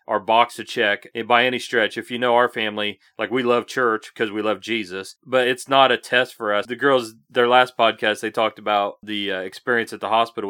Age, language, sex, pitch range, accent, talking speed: 40-59, English, male, 110-140 Hz, American, 235 wpm